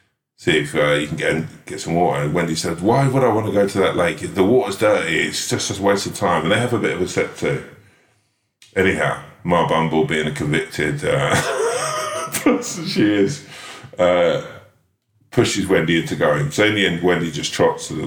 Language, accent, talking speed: English, British, 205 wpm